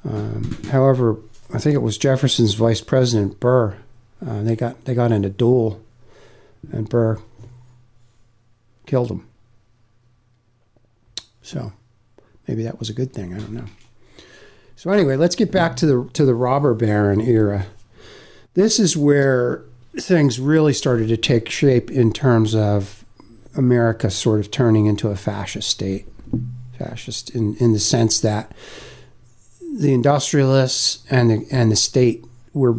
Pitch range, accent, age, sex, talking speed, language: 115-135 Hz, American, 60-79, male, 145 wpm, English